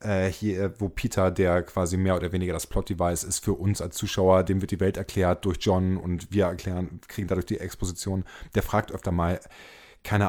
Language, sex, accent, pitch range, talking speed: German, male, German, 95-110 Hz, 200 wpm